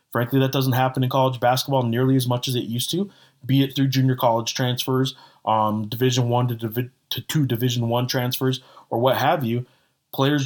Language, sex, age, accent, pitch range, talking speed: English, male, 20-39, American, 115-135 Hz, 200 wpm